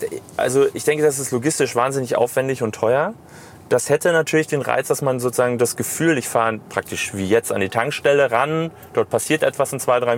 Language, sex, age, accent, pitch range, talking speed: German, male, 30-49, German, 110-150 Hz, 205 wpm